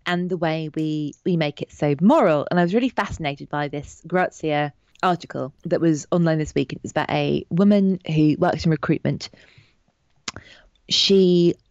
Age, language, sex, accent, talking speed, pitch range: 20-39, English, female, British, 170 wpm, 155-210 Hz